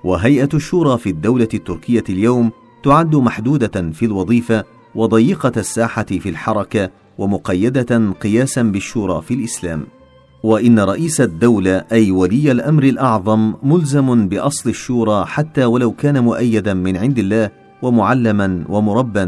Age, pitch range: 40-59, 100-120 Hz